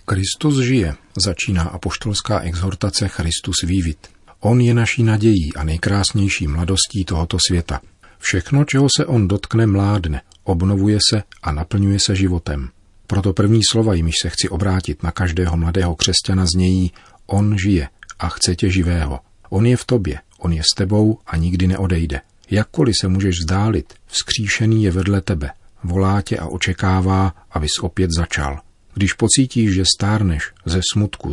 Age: 40-59